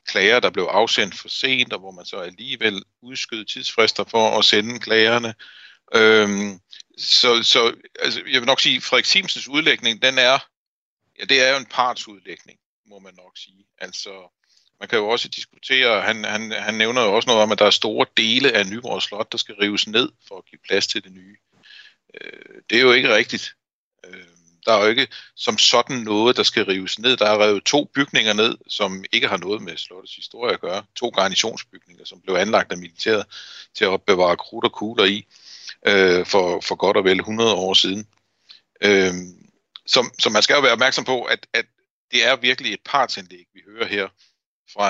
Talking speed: 200 wpm